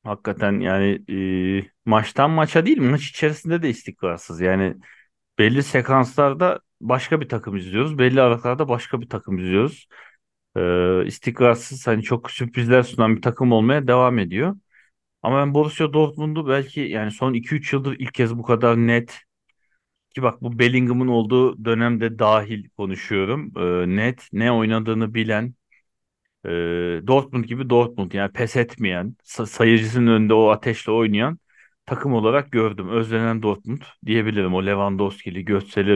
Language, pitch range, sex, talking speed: Turkish, 100-130 Hz, male, 135 wpm